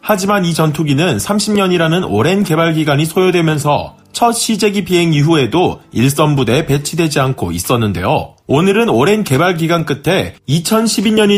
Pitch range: 145-200 Hz